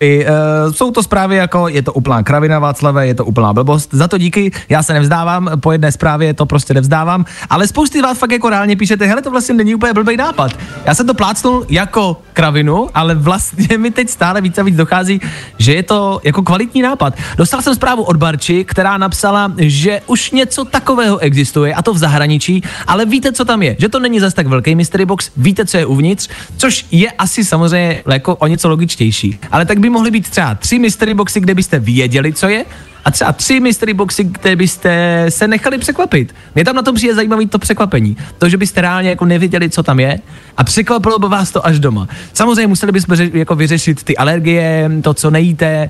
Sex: male